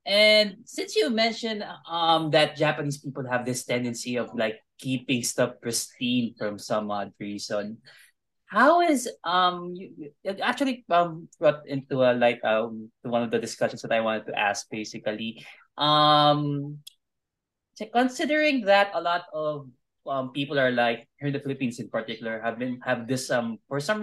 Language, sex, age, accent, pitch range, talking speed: Filipino, male, 20-39, native, 120-170 Hz, 160 wpm